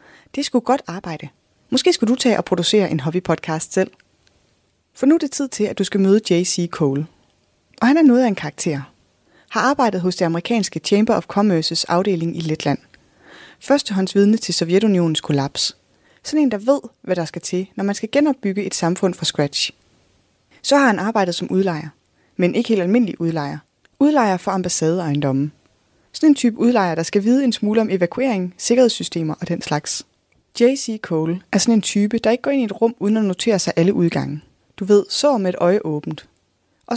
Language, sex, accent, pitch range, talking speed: Danish, female, native, 165-235 Hz, 195 wpm